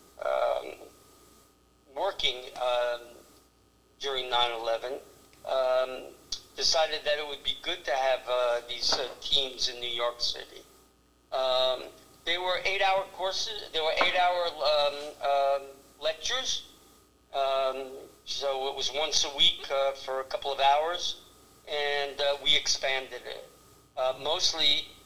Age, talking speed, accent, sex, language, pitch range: 50-69, 120 wpm, American, male, English, 130-150 Hz